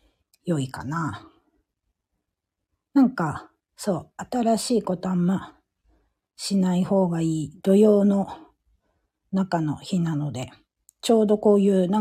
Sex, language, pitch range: female, Japanese, 155-205 Hz